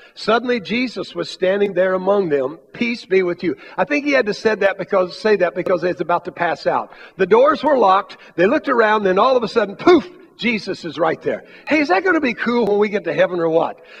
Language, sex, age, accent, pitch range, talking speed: English, male, 60-79, American, 200-290 Hz, 250 wpm